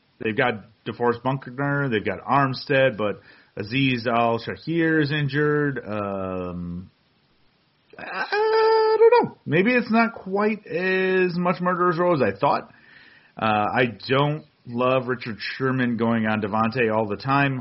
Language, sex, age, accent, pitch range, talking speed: English, male, 30-49, American, 105-135 Hz, 135 wpm